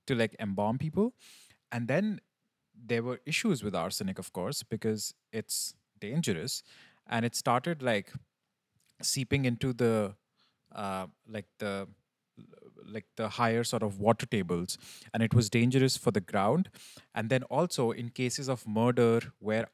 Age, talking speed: 30-49, 145 wpm